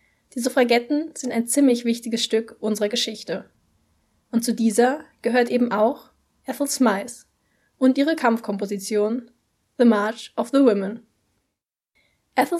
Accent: German